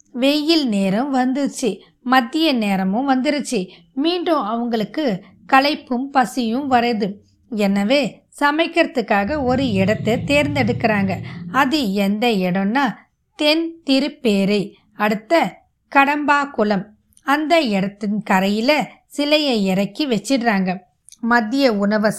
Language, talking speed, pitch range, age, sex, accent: Tamil, 85 wpm, 210-290 Hz, 20-39, female, native